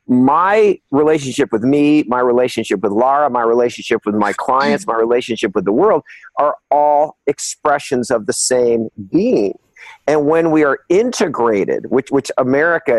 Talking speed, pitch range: 155 wpm, 135-175 Hz